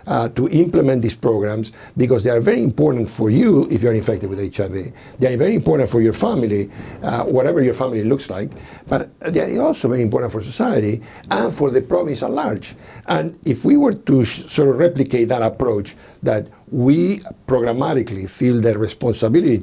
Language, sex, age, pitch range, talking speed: English, male, 60-79, 105-130 Hz, 185 wpm